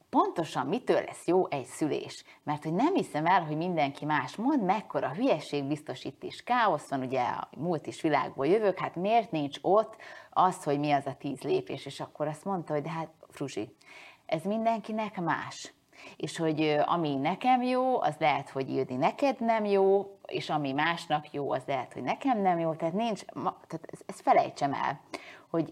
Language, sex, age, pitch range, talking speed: Hungarian, female, 30-49, 145-185 Hz, 180 wpm